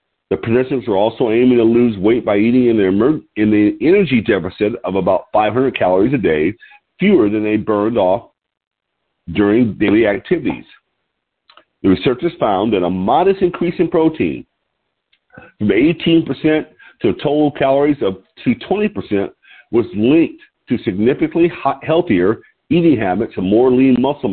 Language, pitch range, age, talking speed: English, 105-175 Hz, 50-69, 140 wpm